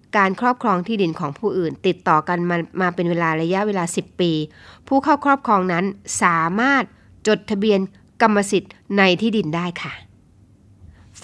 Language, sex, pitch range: Thai, female, 160-205 Hz